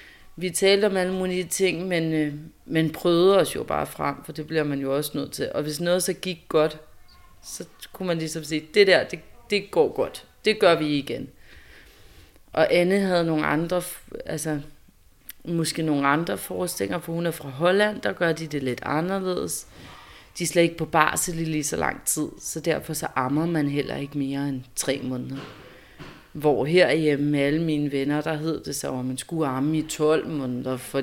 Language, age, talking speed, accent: Danish, 30-49, 200 wpm, native